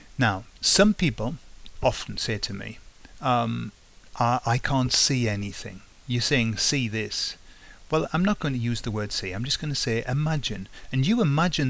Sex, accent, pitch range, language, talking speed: male, British, 105-135 Hz, English, 180 wpm